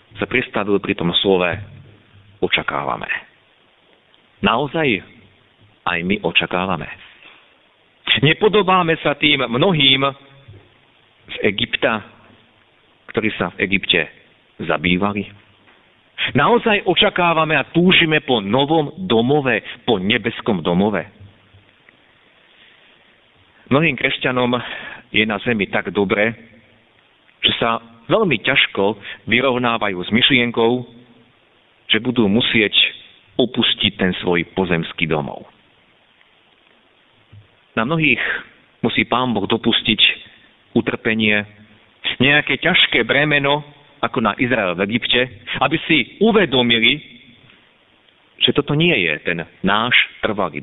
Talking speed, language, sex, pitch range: 90 wpm, Slovak, male, 105-150 Hz